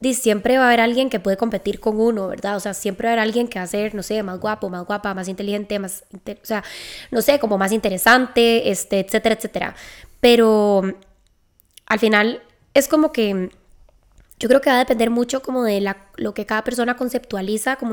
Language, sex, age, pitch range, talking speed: Spanish, female, 10-29, 205-240 Hz, 215 wpm